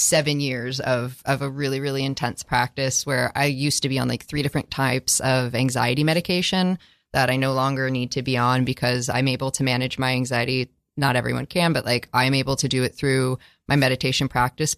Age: 20-39